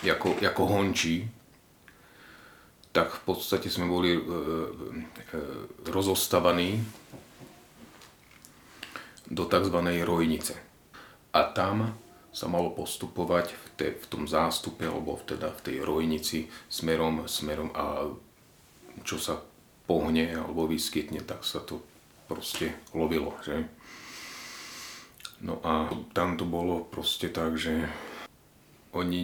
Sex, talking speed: male, 100 wpm